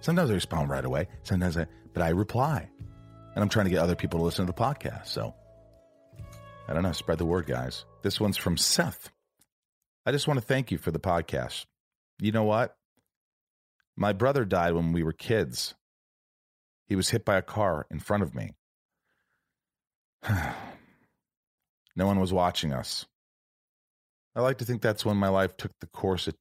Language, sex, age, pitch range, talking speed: English, male, 40-59, 75-105 Hz, 180 wpm